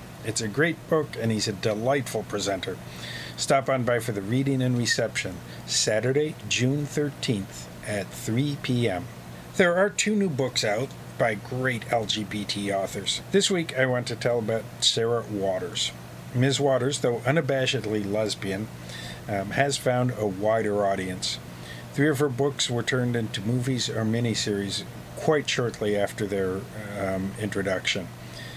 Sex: male